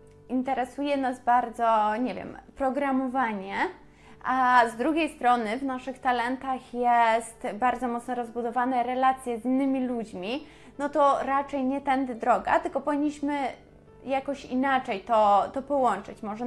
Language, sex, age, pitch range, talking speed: Polish, female, 20-39, 240-285 Hz, 130 wpm